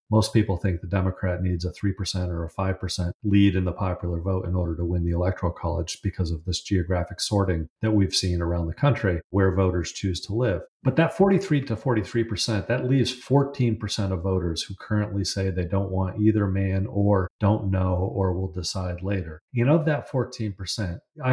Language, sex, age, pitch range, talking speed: English, male, 40-59, 90-110 Hz, 190 wpm